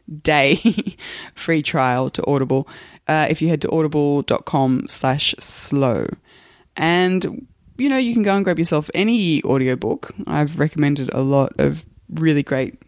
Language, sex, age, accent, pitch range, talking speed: English, female, 20-39, Australian, 140-170 Hz, 145 wpm